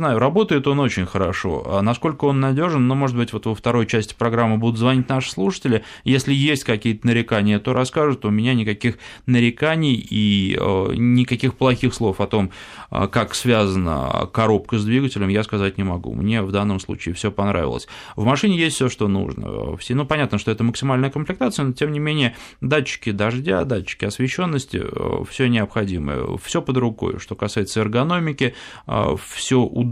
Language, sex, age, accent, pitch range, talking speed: Russian, male, 20-39, native, 100-130 Hz, 165 wpm